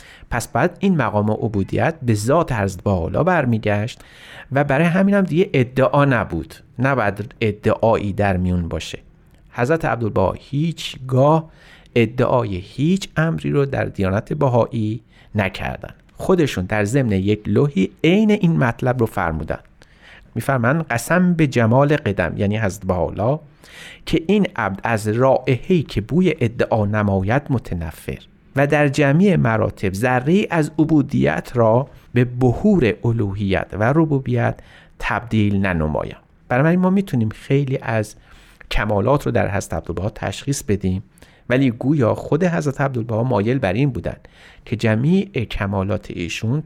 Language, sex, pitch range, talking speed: Persian, male, 105-145 Hz, 130 wpm